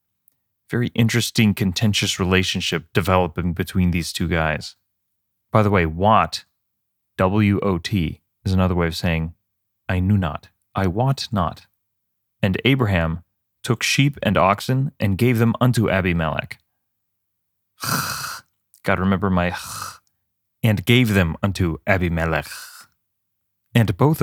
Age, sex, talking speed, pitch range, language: 30-49, male, 120 wpm, 90-110 Hz, English